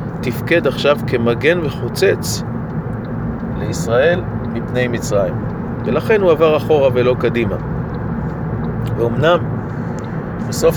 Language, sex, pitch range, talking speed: Hebrew, male, 115-155 Hz, 85 wpm